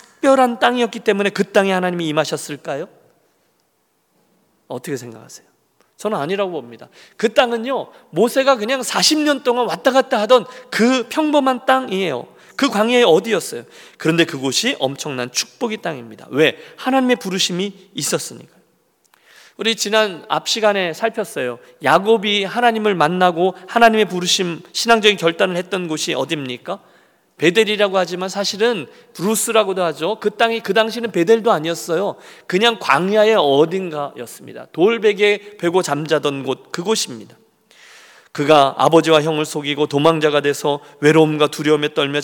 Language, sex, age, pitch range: Korean, male, 40-59, 160-235 Hz